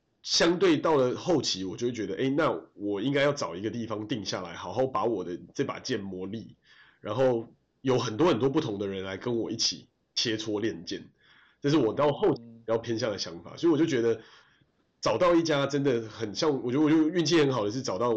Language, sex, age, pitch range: Chinese, male, 30-49, 100-130 Hz